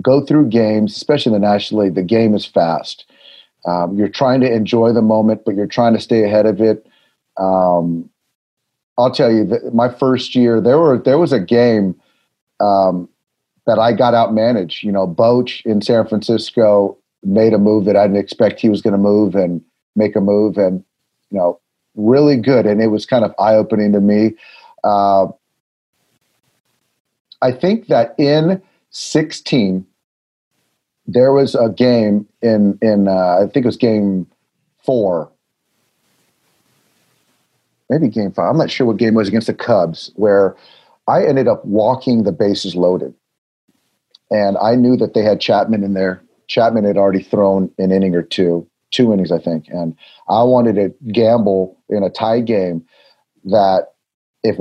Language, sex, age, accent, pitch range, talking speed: English, male, 40-59, American, 100-115 Hz, 170 wpm